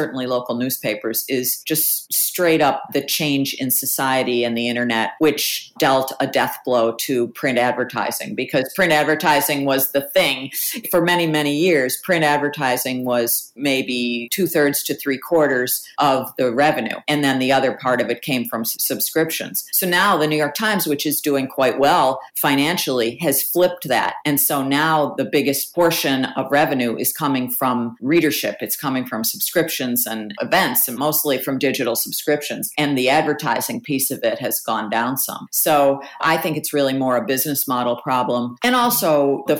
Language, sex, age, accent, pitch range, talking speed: English, female, 50-69, American, 125-150 Hz, 175 wpm